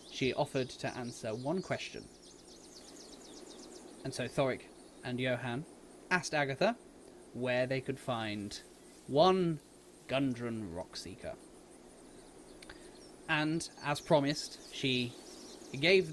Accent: British